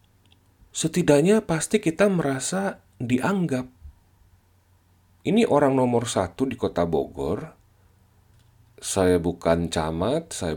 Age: 40-59